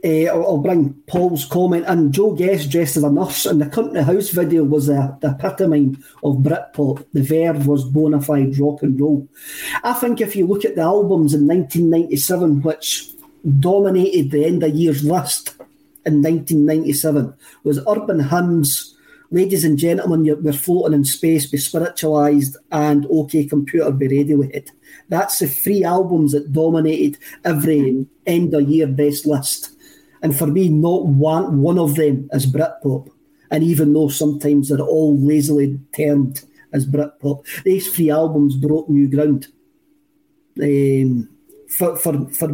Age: 40-59